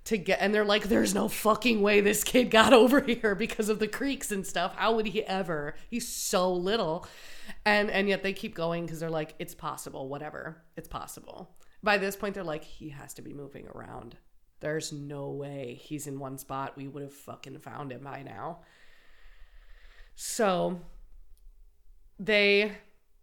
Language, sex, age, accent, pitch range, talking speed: English, female, 20-39, American, 145-195 Hz, 180 wpm